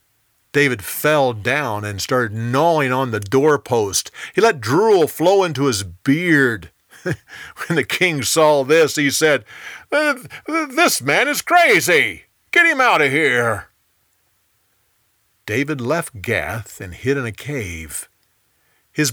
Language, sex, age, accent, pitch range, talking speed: English, male, 50-69, American, 110-165 Hz, 130 wpm